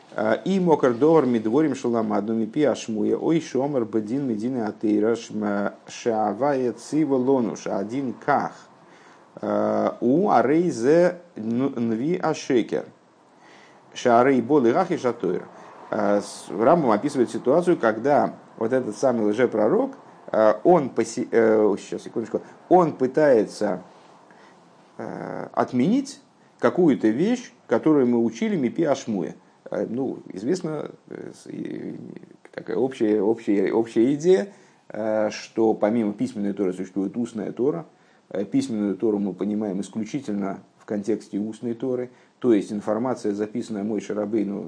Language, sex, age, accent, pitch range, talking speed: Russian, male, 50-69, native, 105-130 Hz, 100 wpm